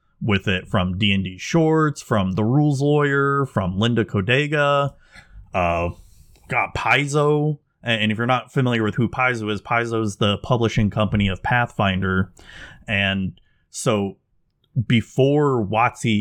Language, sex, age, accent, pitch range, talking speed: English, male, 30-49, American, 95-120 Hz, 125 wpm